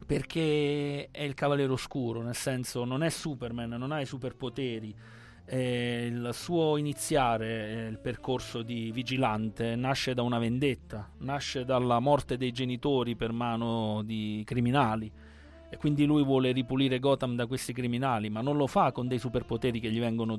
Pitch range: 120-145 Hz